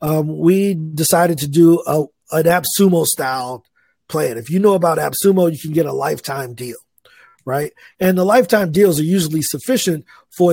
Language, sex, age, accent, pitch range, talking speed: English, male, 40-59, American, 150-180 Hz, 165 wpm